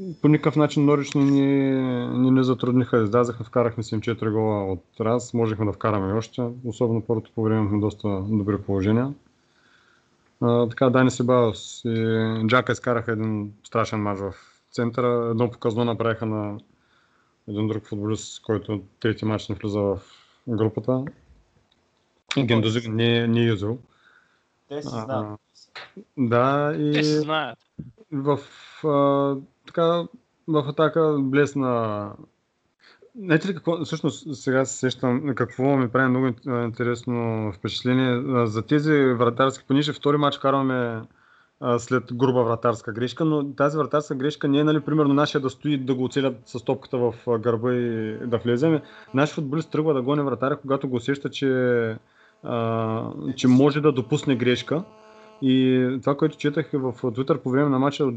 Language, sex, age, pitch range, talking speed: Bulgarian, male, 30-49, 115-145 Hz, 145 wpm